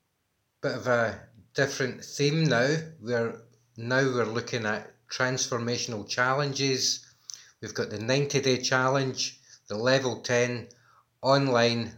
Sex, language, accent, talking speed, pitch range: male, English, British, 115 wpm, 110-130 Hz